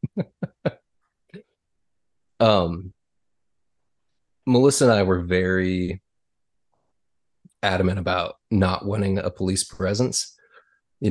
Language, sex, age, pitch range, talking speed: English, male, 20-39, 90-100 Hz, 75 wpm